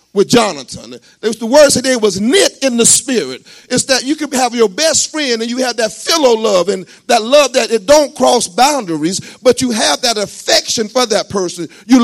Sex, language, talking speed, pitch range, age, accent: male, English, 215 wpm, 200-280 Hz, 40-59, American